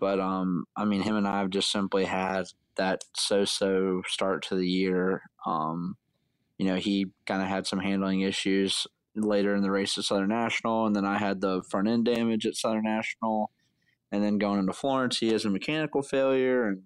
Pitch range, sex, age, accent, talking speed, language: 95-110 Hz, male, 20-39, American, 195 wpm, English